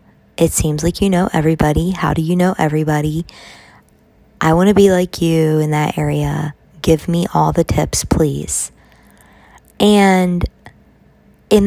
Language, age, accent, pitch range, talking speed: English, 20-39, American, 155-185 Hz, 145 wpm